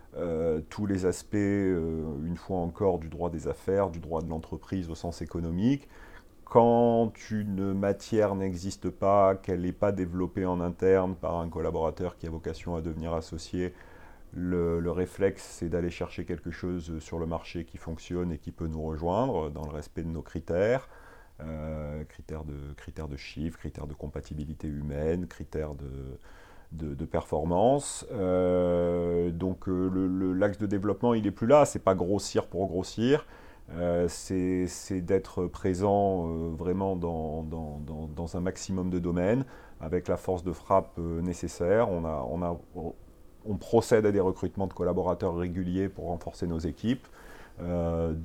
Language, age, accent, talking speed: French, 40-59, French, 165 wpm